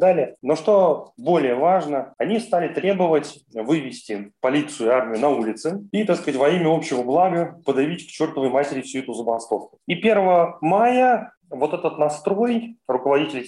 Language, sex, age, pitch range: Russian, male, 30-49, 130-180 Hz